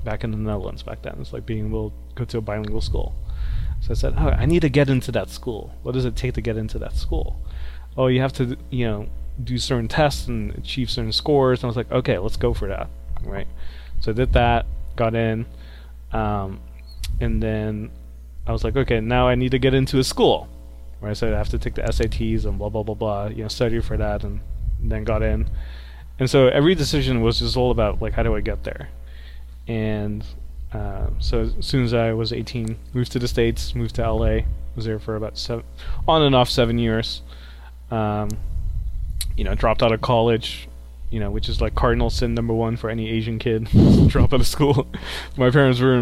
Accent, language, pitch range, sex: American, English, 85-120 Hz, male